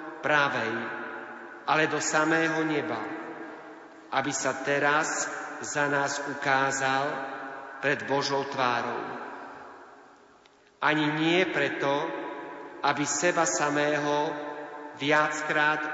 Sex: male